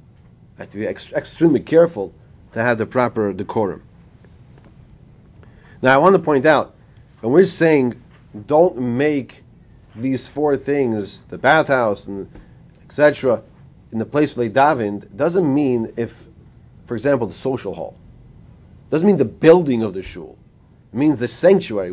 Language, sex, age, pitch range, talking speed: English, male, 40-59, 110-145 Hz, 150 wpm